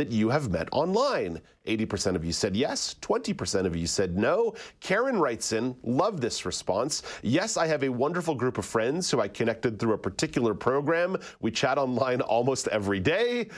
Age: 30-49